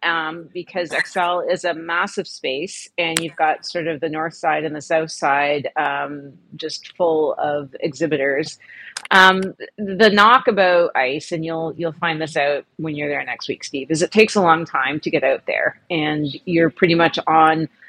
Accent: American